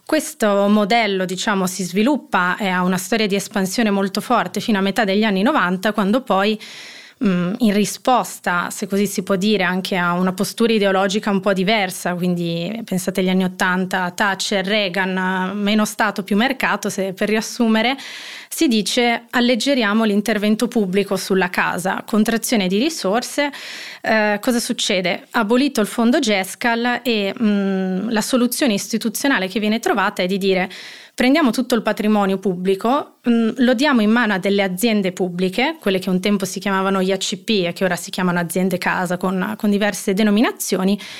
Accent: native